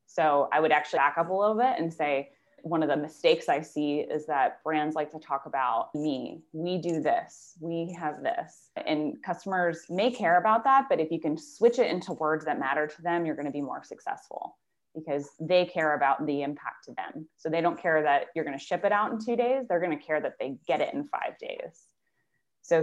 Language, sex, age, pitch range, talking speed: English, female, 20-39, 145-175 Hz, 235 wpm